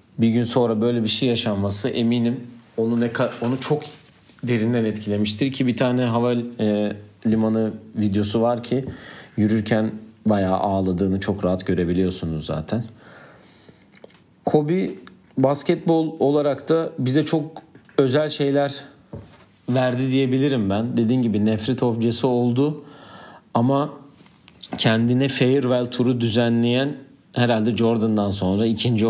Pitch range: 105-130 Hz